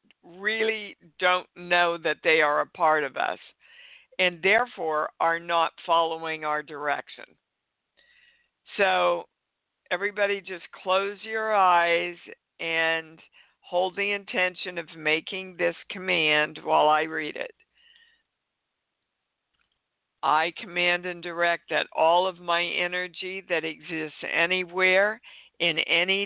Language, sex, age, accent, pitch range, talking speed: English, female, 60-79, American, 165-195 Hz, 110 wpm